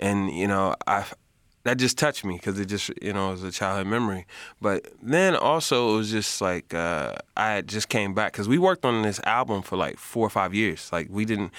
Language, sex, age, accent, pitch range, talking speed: English, male, 20-39, American, 95-110 Hz, 240 wpm